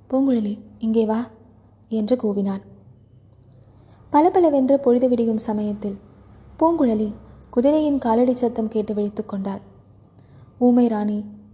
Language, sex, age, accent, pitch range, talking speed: Tamil, female, 20-39, native, 200-250 Hz, 80 wpm